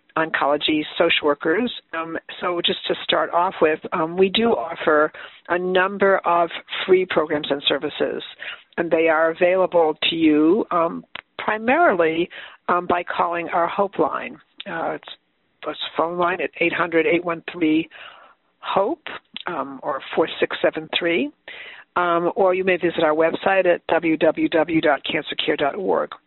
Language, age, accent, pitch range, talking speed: English, 60-79, American, 165-215 Hz, 120 wpm